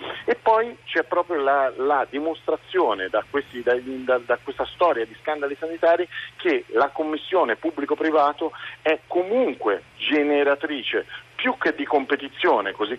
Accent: native